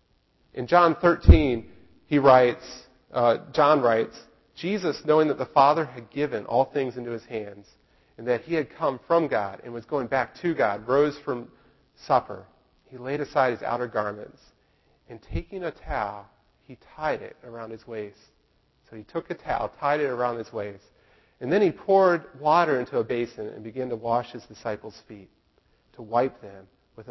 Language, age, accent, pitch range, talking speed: English, 40-59, American, 105-150 Hz, 180 wpm